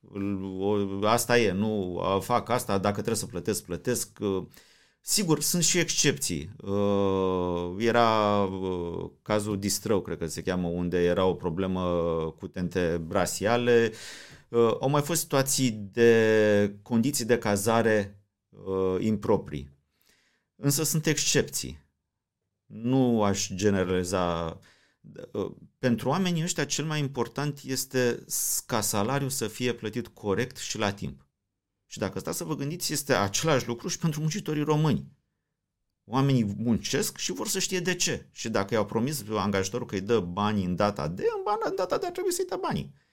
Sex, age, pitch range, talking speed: male, 30-49, 95-135 Hz, 140 wpm